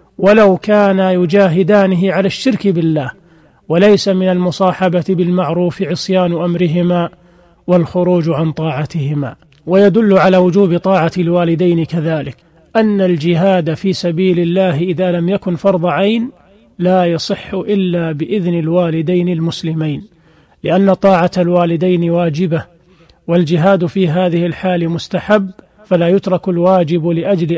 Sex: male